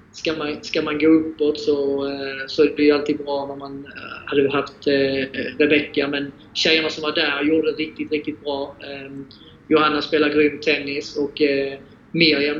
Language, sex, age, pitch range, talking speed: Swedish, male, 30-49, 140-160 Hz, 155 wpm